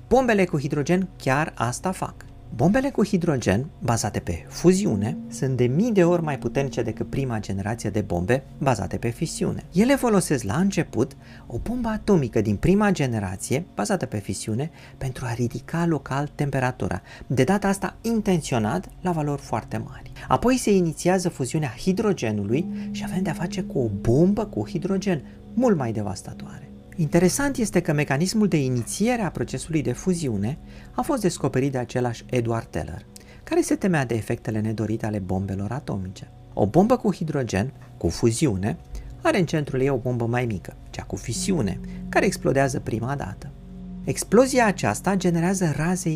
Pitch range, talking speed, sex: 120-185 Hz, 160 wpm, male